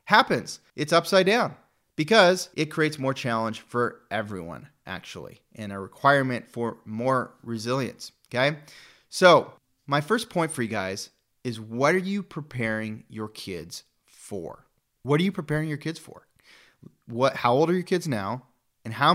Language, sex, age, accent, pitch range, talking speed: English, male, 30-49, American, 115-150 Hz, 155 wpm